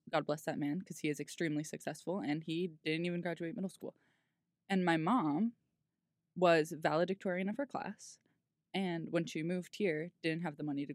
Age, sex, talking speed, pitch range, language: 20-39, female, 185 wpm, 150-175 Hz, English